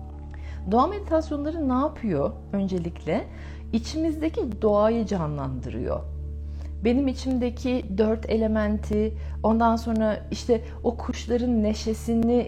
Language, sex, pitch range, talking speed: Turkish, female, 195-240 Hz, 85 wpm